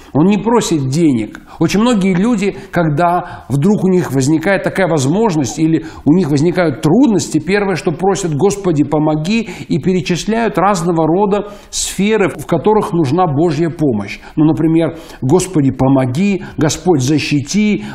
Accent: native